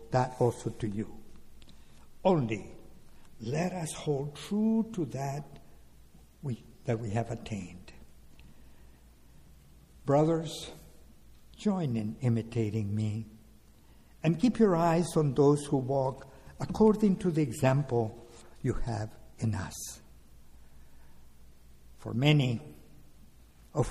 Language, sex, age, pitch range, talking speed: English, male, 60-79, 100-145 Hz, 100 wpm